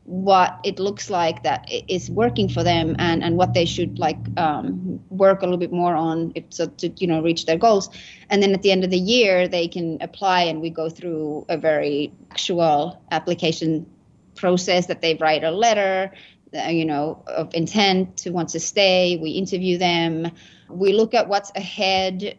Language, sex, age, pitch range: English, female, 30-49, 170-210 Hz